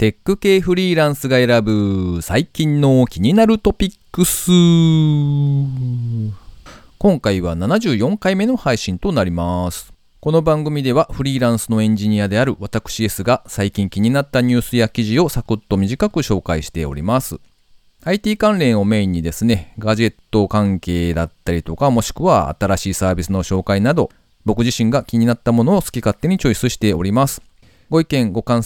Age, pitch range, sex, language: 40-59, 95-150 Hz, male, Japanese